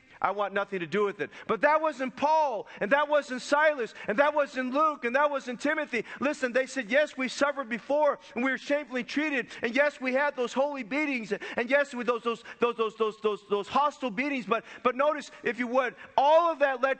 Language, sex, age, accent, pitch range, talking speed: English, male, 40-59, American, 225-270 Hz, 225 wpm